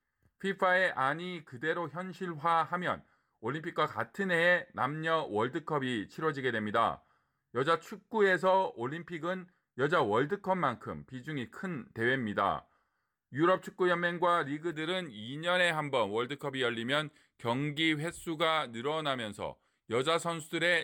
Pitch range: 135-175 Hz